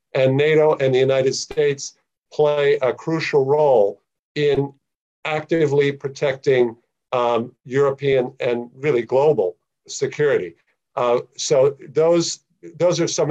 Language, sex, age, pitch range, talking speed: Arabic, male, 50-69, 130-165 Hz, 115 wpm